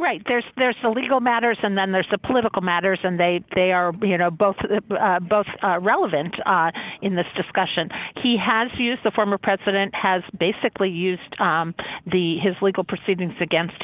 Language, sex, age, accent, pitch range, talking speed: English, female, 50-69, American, 165-205 Hz, 180 wpm